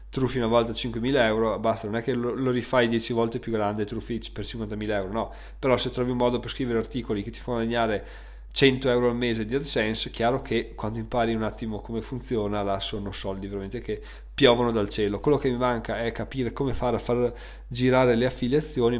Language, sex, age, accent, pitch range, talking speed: Italian, male, 20-39, native, 115-140 Hz, 215 wpm